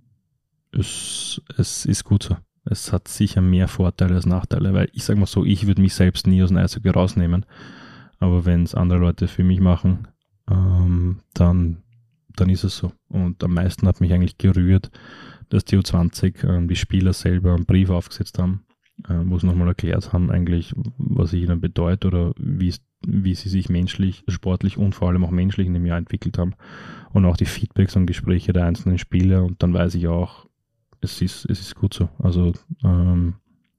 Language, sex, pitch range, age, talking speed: German, male, 90-100 Hz, 20-39, 190 wpm